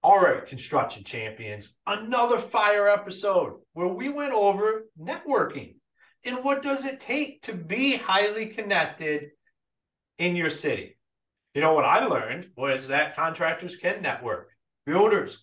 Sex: male